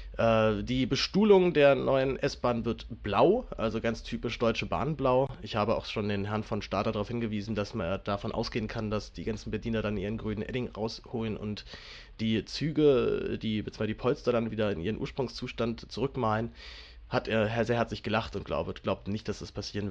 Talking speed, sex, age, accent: 185 wpm, male, 30-49, German